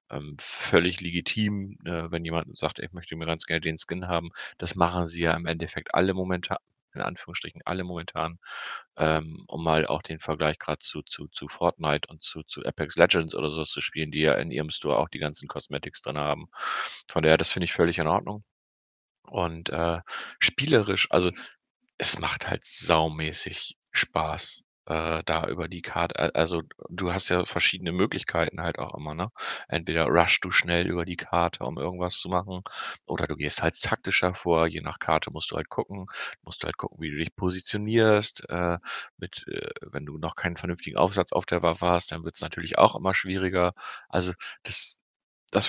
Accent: German